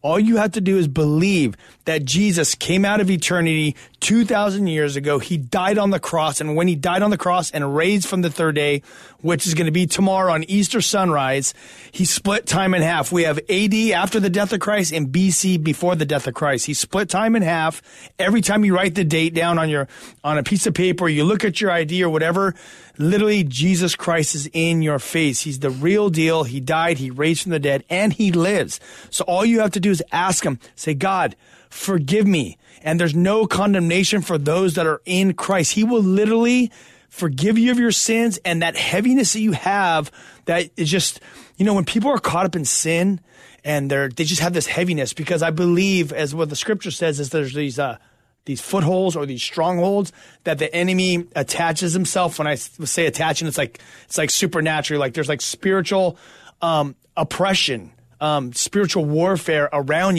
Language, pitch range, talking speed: English, 155-195 Hz, 205 wpm